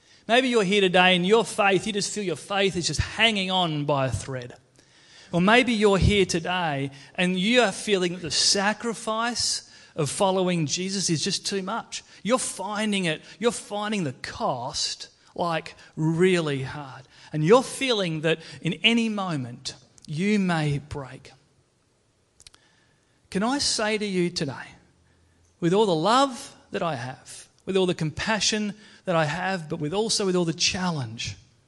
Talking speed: 160 wpm